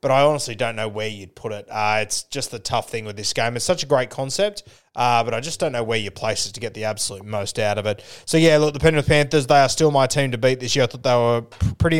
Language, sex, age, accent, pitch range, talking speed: English, male, 20-39, Australian, 120-140 Hz, 305 wpm